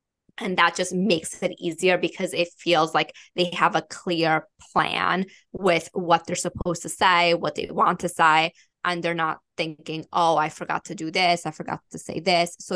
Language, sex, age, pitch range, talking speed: English, female, 20-39, 165-180 Hz, 200 wpm